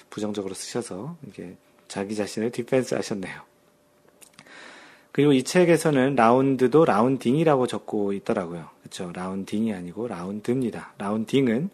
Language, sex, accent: Korean, male, native